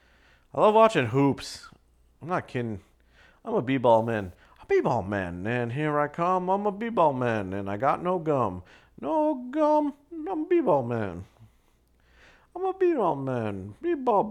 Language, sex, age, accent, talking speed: English, male, 40-59, American, 165 wpm